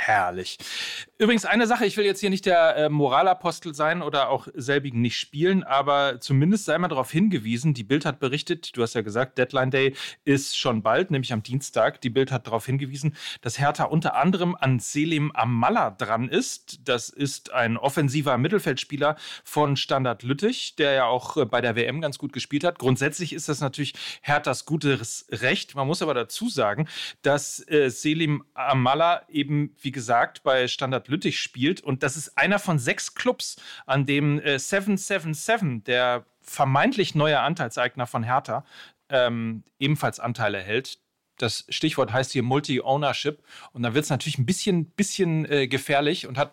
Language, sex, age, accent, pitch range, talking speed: German, male, 40-59, German, 130-155 Hz, 170 wpm